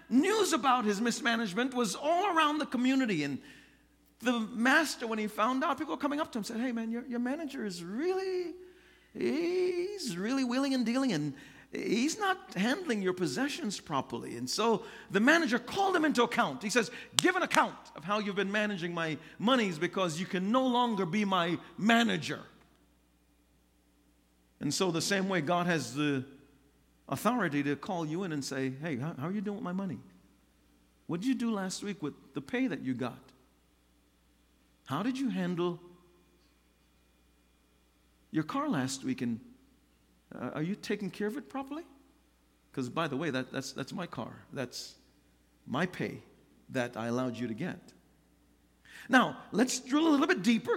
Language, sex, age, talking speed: English, male, 50-69, 175 wpm